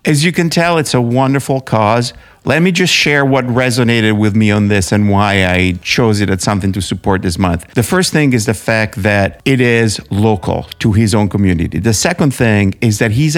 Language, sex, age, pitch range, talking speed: English, male, 50-69, 105-130 Hz, 220 wpm